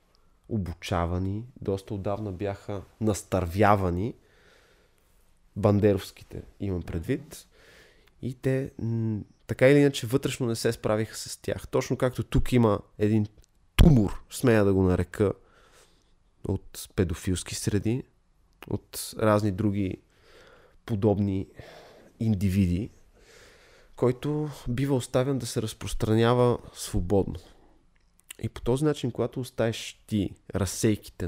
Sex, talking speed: male, 100 wpm